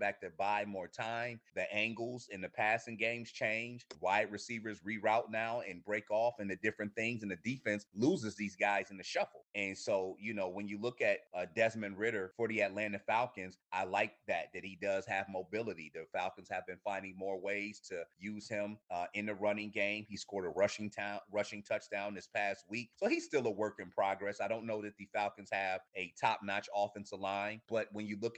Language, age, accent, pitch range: English, 30-49, American, 100-115 Hz